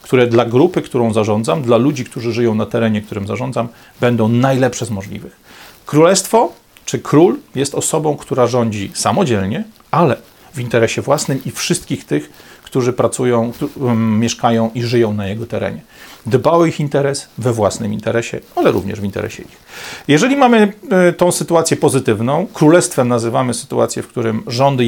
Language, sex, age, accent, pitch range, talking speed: Polish, male, 40-59, native, 115-145 Hz, 150 wpm